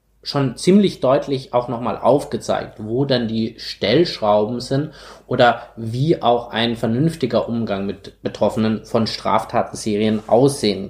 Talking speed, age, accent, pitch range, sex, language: 120 wpm, 20-39, German, 115-135 Hz, male, German